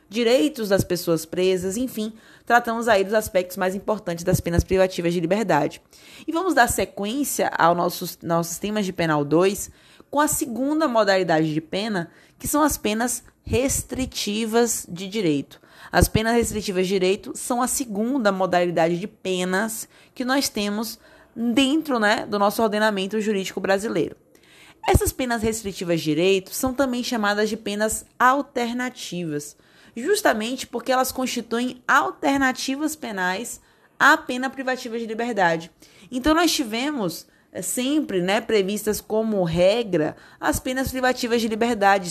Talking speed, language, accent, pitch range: 135 wpm, Portuguese, Brazilian, 185-255 Hz